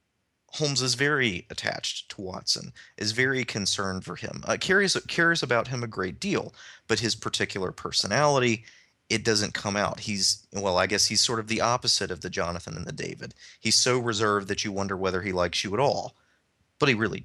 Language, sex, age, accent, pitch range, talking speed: English, male, 30-49, American, 85-105 Hz, 200 wpm